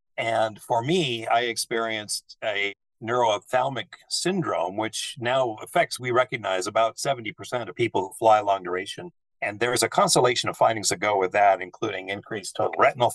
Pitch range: 105-135 Hz